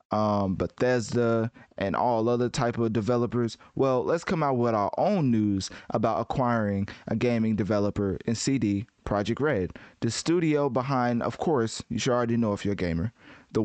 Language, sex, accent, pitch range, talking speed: English, male, American, 105-130 Hz, 170 wpm